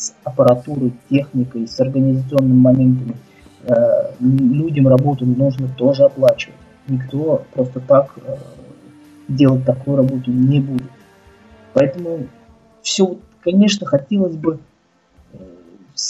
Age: 20-39